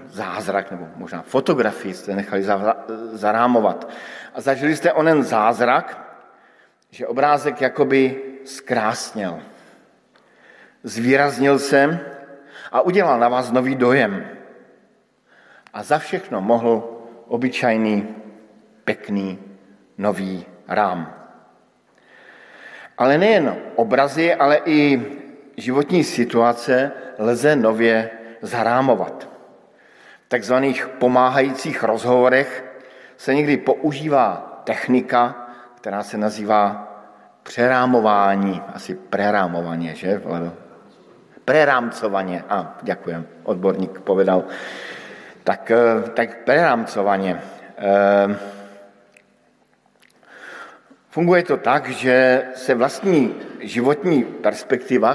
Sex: male